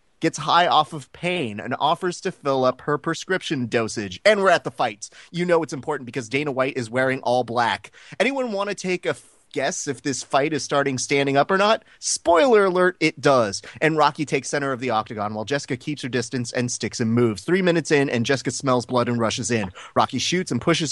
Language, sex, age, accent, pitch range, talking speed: English, male, 30-49, American, 130-180 Hz, 225 wpm